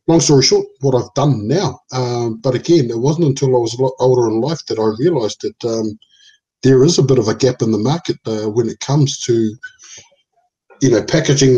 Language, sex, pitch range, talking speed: English, male, 120-145 Hz, 225 wpm